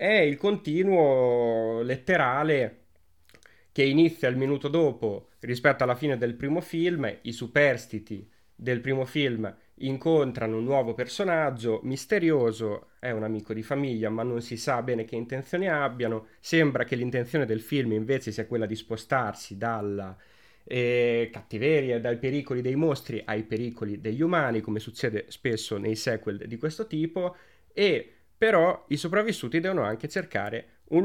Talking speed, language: 145 wpm, Italian